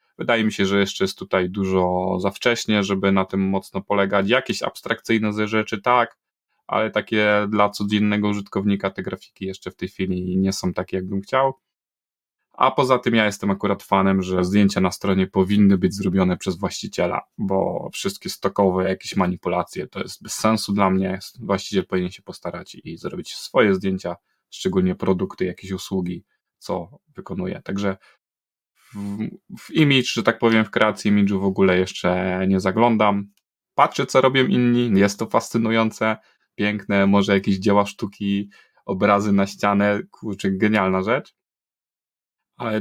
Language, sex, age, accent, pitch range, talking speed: Polish, male, 20-39, native, 95-110 Hz, 155 wpm